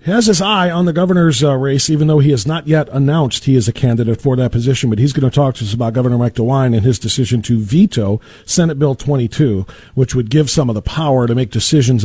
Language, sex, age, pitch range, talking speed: English, male, 40-59, 130-175 Hz, 260 wpm